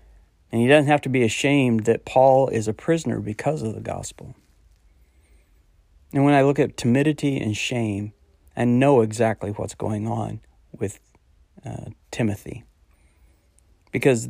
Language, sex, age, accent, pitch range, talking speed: English, male, 40-59, American, 100-120 Hz, 145 wpm